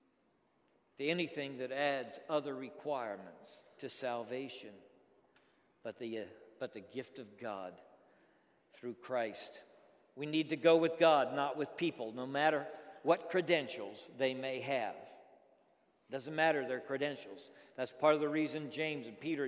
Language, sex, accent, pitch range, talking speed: English, male, American, 135-170 Hz, 140 wpm